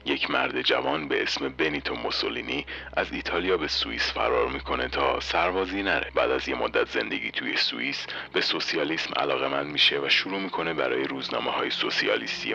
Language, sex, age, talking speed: Persian, male, 40-59, 165 wpm